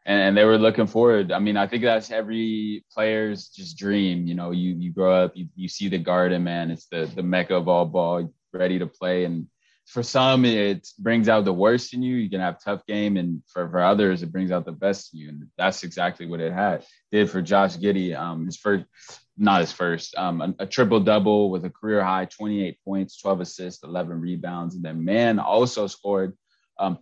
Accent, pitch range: American, 90-105 Hz